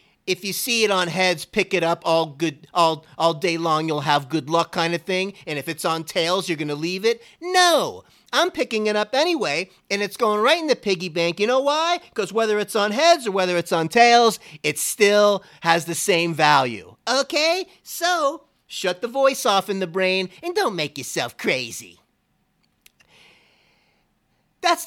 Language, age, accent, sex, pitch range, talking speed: English, 40-59, American, male, 160-215 Hz, 195 wpm